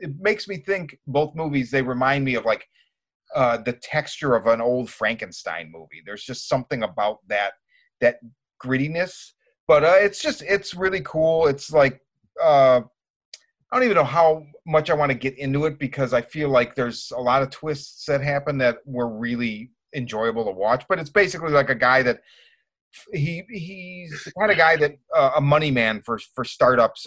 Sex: male